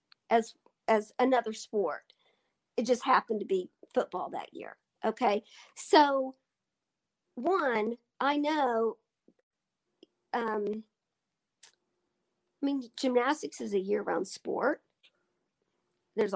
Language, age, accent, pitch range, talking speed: English, 50-69, American, 225-320 Hz, 95 wpm